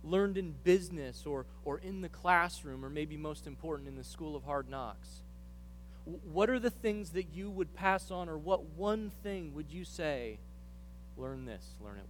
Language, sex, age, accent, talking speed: English, male, 30-49, American, 195 wpm